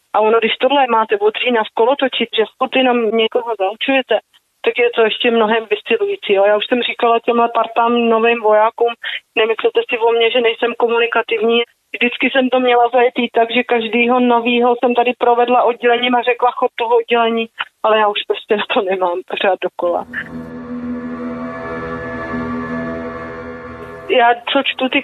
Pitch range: 215-245 Hz